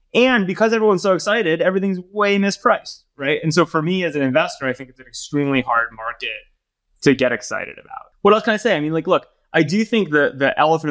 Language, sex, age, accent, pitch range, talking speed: English, male, 20-39, American, 115-145 Hz, 230 wpm